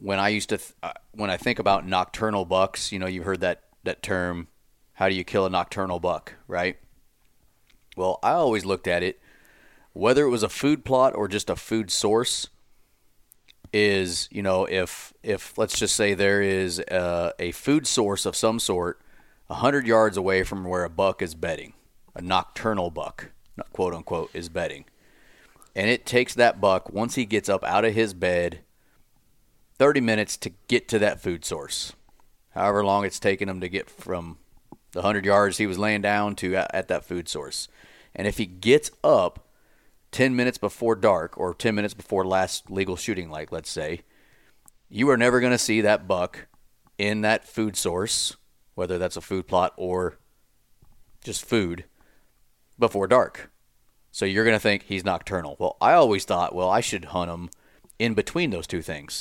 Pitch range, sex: 90-110 Hz, male